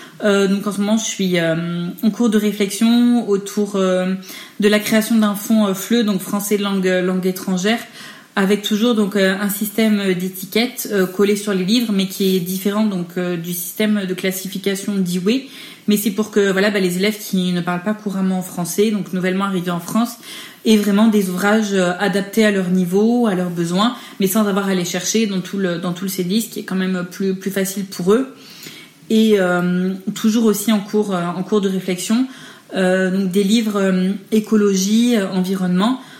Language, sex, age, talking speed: French, female, 30-49, 195 wpm